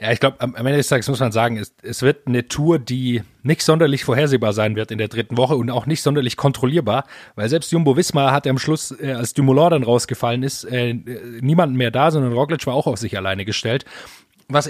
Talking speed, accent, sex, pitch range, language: 225 wpm, German, male, 115-140 Hz, German